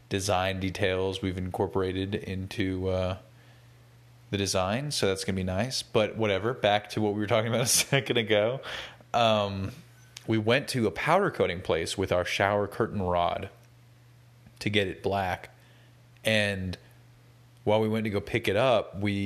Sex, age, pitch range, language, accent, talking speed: male, 30-49, 95-120 Hz, English, American, 165 wpm